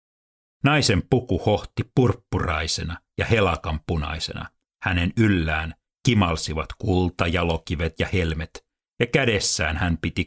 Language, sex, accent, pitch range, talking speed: Finnish, male, native, 80-100 Hz, 105 wpm